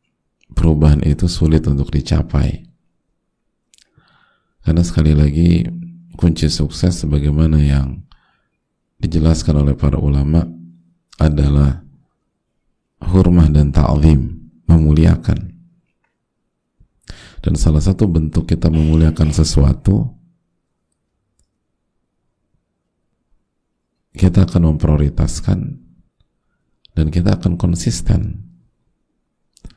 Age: 40-59